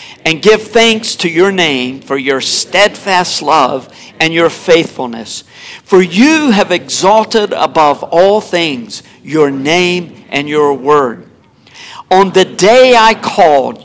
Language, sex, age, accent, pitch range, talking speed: English, male, 50-69, American, 140-195 Hz, 130 wpm